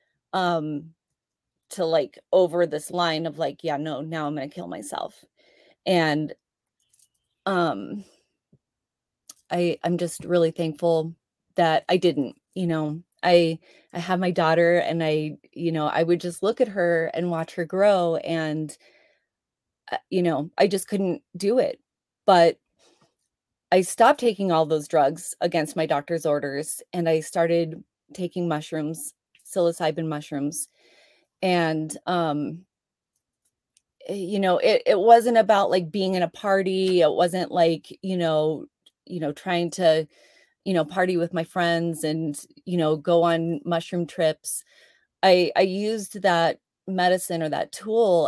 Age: 30-49